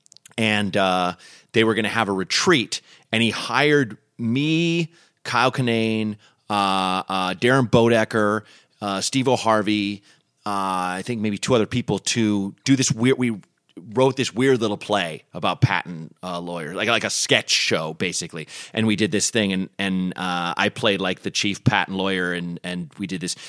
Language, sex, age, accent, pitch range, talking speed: English, male, 30-49, American, 90-115 Hz, 175 wpm